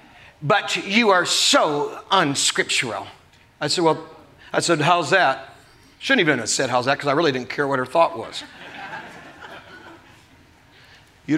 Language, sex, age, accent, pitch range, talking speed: English, male, 40-59, American, 155-210 Hz, 150 wpm